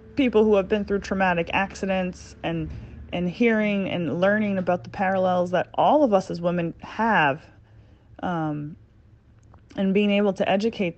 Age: 30-49